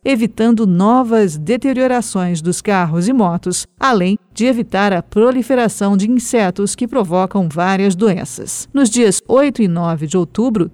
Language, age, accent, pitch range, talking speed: Portuguese, 50-69, Brazilian, 190-240 Hz, 140 wpm